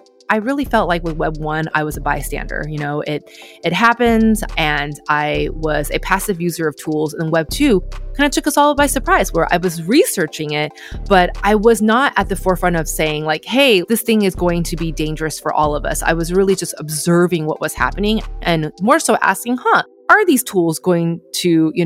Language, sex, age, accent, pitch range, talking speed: English, female, 20-39, American, 160-220 Hz, 215 wpm